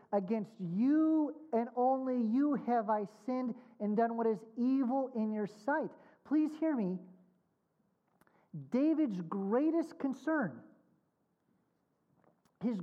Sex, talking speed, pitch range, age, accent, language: male, 110 wpm, 195-285 Hz, 40-59, American, English